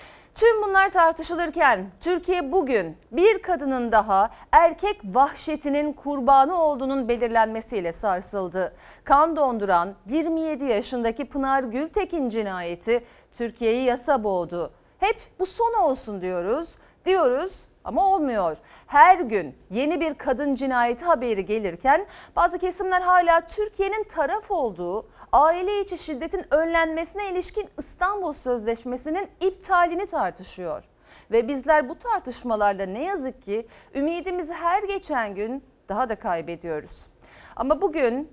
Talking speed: 110 wpm